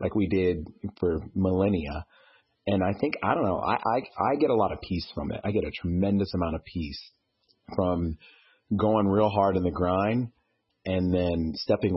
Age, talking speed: 30-49, 190 wpm